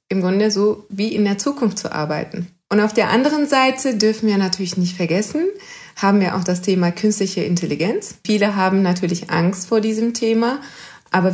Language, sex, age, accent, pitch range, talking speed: German, female, 30-49, German, 180-210 Hz, 180 wpm